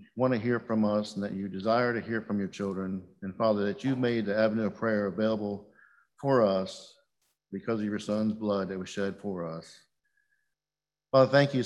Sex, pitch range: male, 105-120 Hz